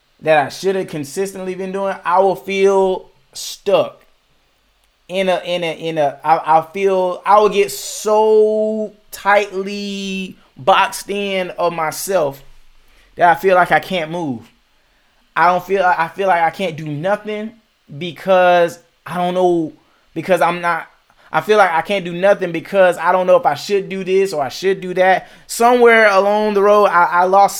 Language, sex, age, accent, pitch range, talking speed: English, male, 20-39, American, 165-200 Hz, 175 wpm